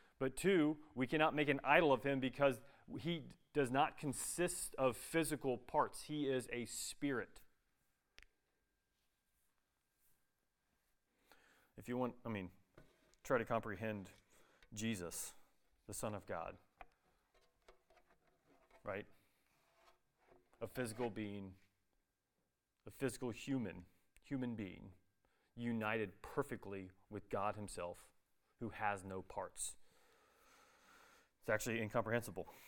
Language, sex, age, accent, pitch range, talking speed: English, male, 30-49, American, 110-150 Hz, 100 wpm